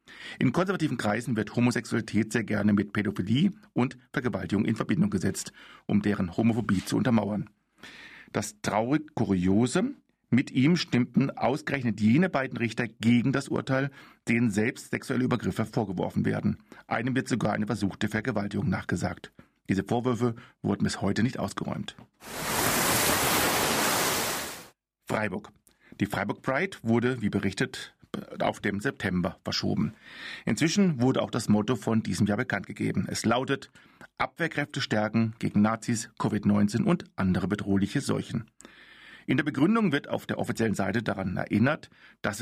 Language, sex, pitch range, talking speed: German, male, 105-130 Hz, 135 wpm